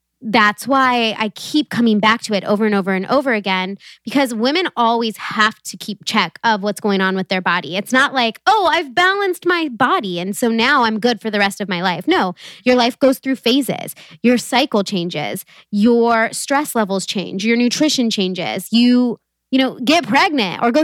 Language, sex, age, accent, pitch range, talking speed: English, female, 20-39, American, 200-250 Hz, 200 wpm